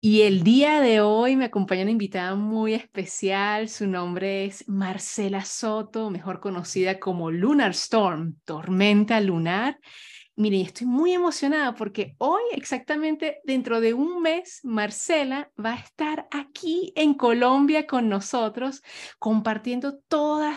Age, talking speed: 30-49, 130 wpm